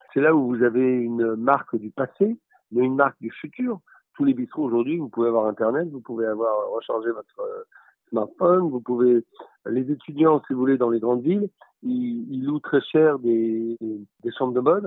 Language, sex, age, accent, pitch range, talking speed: French, male, 50-69, French, 120-170 Hz, 200 wpm